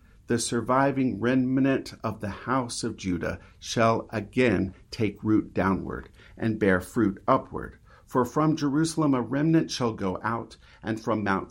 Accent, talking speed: American, 145 wpm